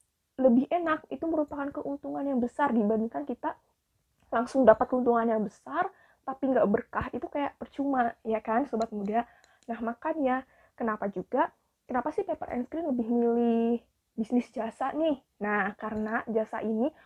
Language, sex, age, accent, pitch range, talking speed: Indonesian, female, 20-39, native, 220-265 Hz, 150 wpm